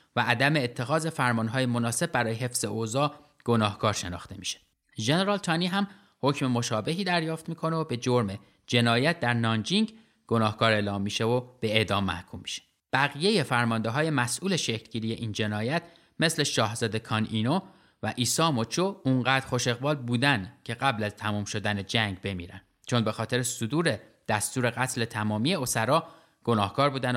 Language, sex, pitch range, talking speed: Persian, male, 110-145 Hz, 150 wpm